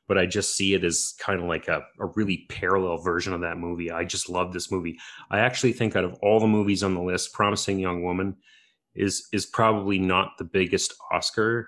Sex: male